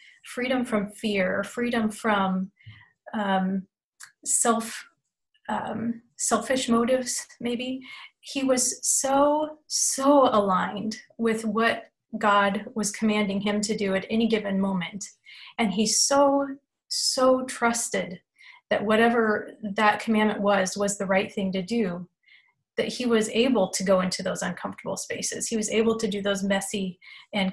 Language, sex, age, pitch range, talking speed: English, female, 30-49, 200-235 Hz, 135 wpm